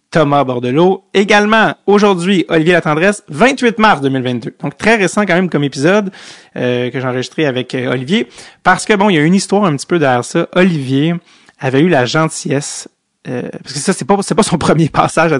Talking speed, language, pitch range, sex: 210 wpm, English, 130-175 Hz, male